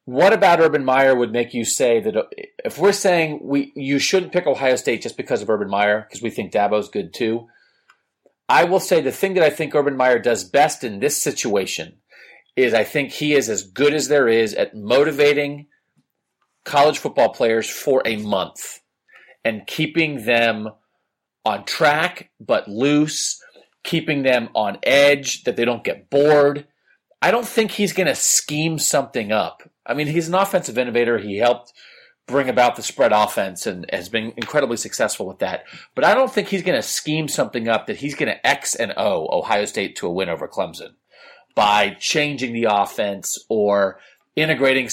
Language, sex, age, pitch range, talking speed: English, male, 30-49, 115-155 Hz, 185 wpm